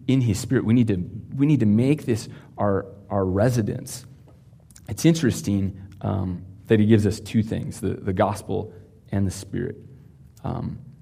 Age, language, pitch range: 30-49, English, 95-125 Hz